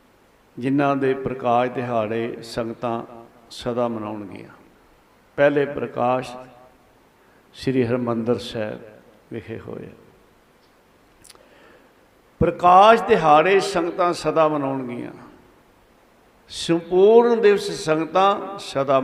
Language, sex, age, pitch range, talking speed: Punjabi, male, 60-79, 125-155 Hz, 75 wpm